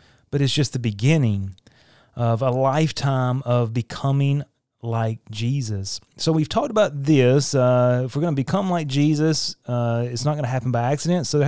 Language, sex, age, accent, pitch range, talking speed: English, male, 30-49, American, 125-165 Hz, 185 wpm